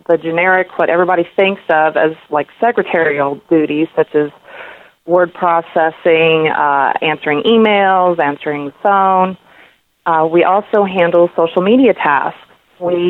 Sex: female